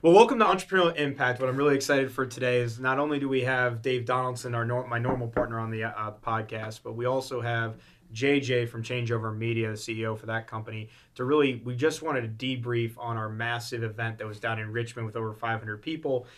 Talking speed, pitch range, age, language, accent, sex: 225 wpm, 115-135 Hz, 20-39, English, American, male